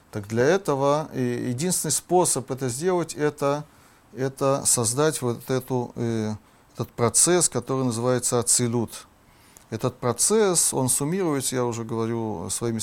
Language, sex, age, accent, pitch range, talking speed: Russian, male, 30-49, native, 110-145 Hz, 115 wpm